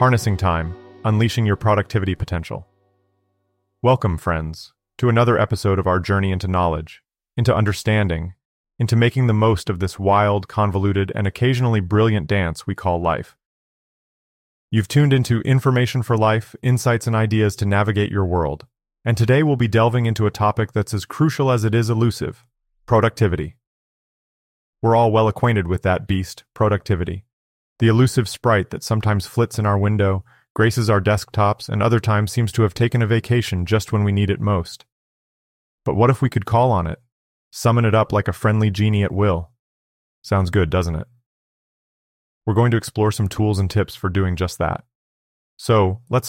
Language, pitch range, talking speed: English, 95-115 Hz, 170 wpm